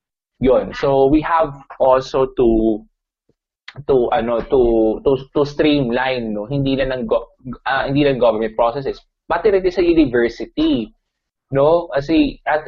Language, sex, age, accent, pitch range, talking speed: Filipino, male, 20-39, native, 120-165 Hz, 135 wpm